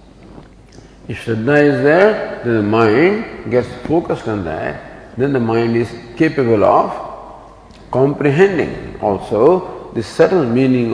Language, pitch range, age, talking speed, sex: English, 115-150 Hz, 50-69, 120 wpm, male